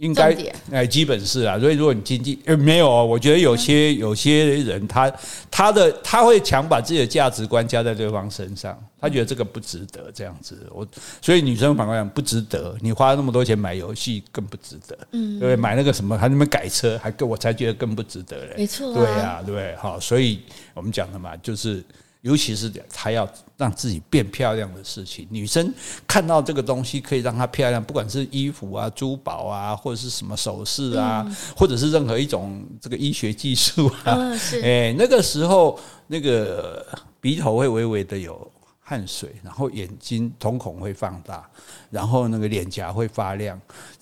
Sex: male